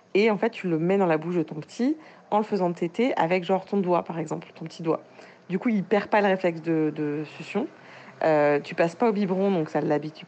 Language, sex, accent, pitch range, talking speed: French, female, French, 155-190 Hz, 255 wpm